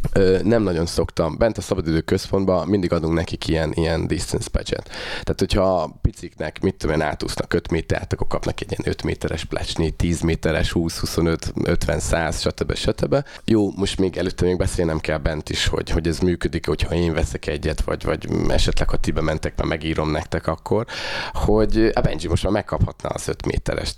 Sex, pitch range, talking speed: male, 80-100 Hz, 190 wpm